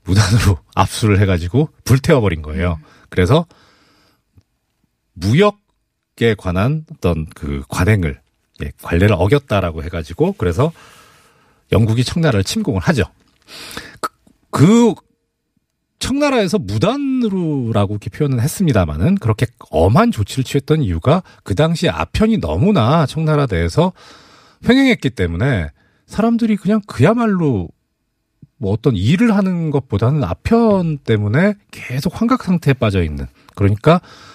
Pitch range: 95-160 Hz